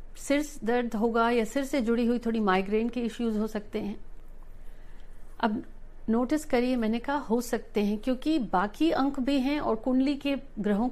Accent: native